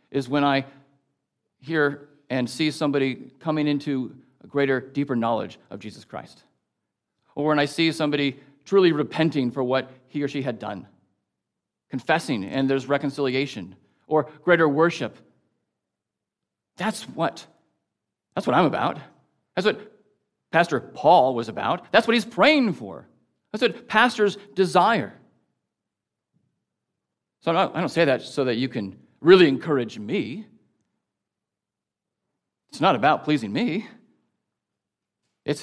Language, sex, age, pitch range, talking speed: English, male, 40-59, 135-210 Hz, 125 wpm